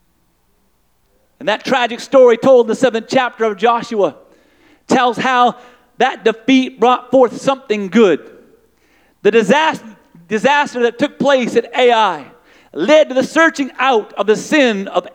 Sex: male